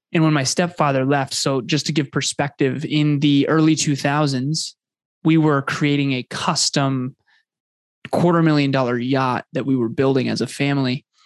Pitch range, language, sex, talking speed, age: 130-150 Hz, English, male, 160 wpm, 20-39